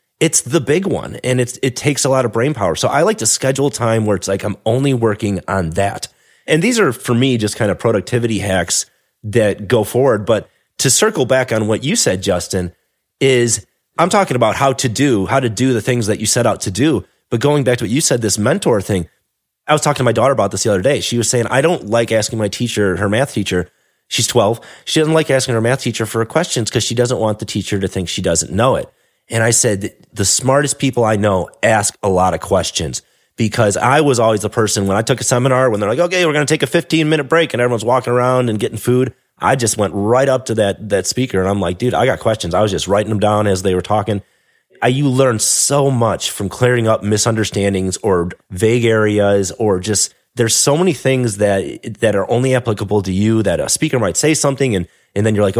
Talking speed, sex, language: 245 wpm, male, English